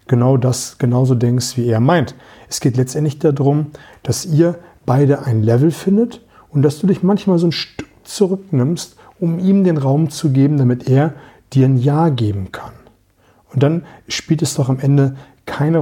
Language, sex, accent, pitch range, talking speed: German, male, German, 130-160 Hz, 180 wpm